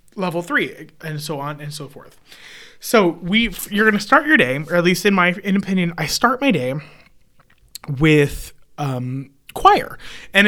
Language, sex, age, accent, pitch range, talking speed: English, male, 30-49, American, 145-195 Hz, 170 wpm